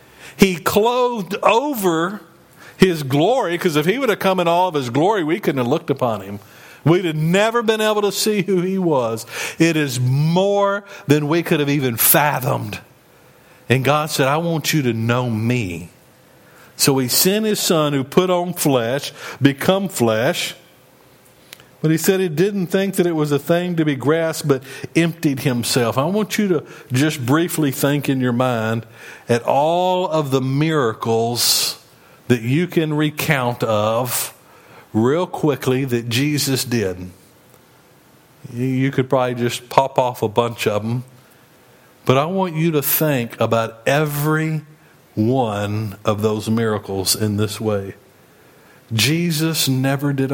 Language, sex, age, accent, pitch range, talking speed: English, male, 50-69, American, 120-170 Hz, 155 wpm